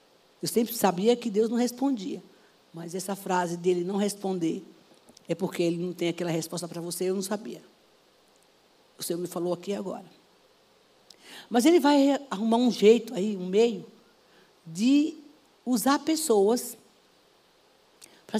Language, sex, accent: Portuguese, female, Brazilian